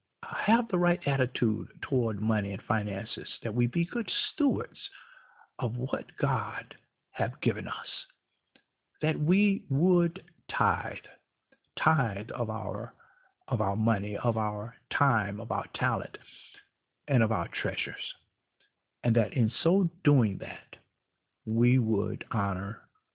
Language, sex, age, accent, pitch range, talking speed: English, male, 60-79, American, 110-170 Hz, 125 wpm